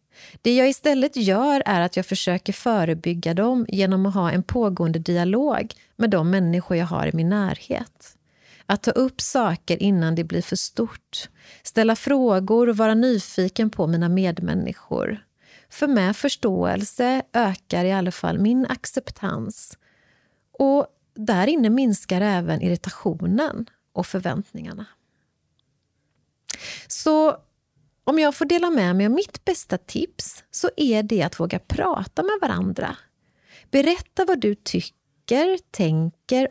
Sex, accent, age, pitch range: female, Swedish, 30-49, 185-265 Hz